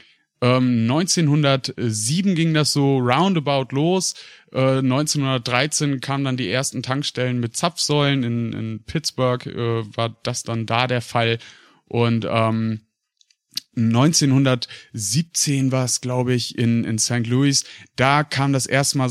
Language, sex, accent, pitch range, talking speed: German, male, German, 115-140 Hz, 130 wpm